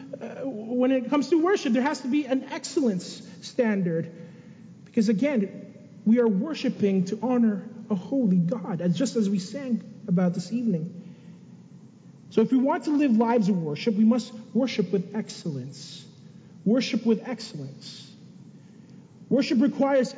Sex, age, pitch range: male, 30-49, 195-285 Hz